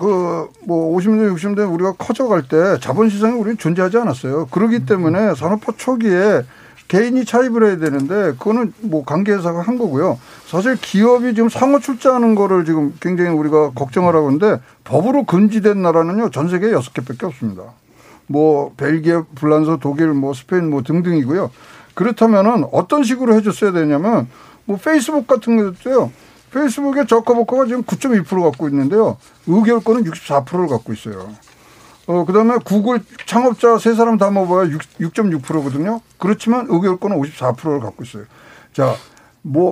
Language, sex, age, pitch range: Korean, male, 60-79, 155-225 Hz